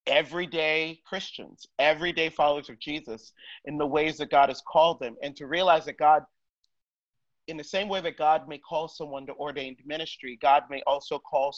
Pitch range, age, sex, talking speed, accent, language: 135-165 Hz, 40-59, male, 180 wpm, American, English